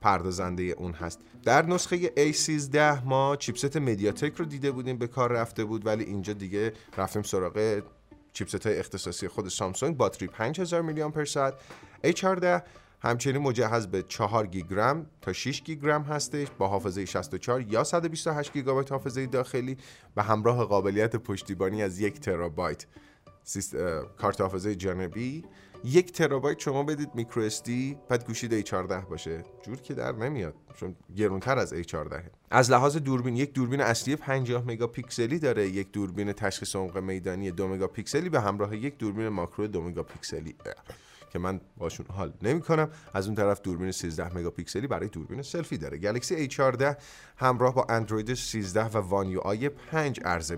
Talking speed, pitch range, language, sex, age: 150 wpm, 95-140 Hz, Persian, male, 30-49